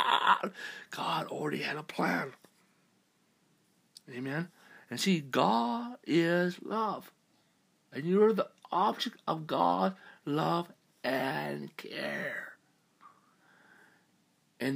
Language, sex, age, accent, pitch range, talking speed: English, male, 60-79, American, 130-190 Hz, 85 wpm